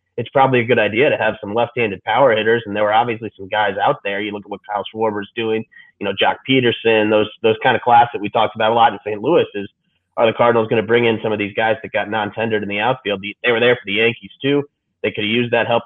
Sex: male